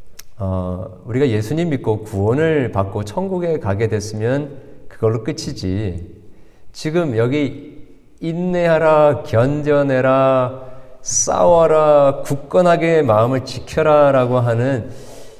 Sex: male